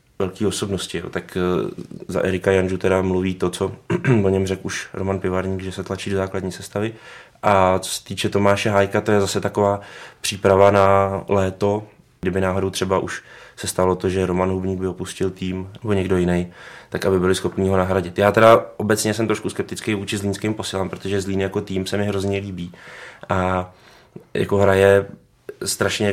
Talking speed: 180 wpm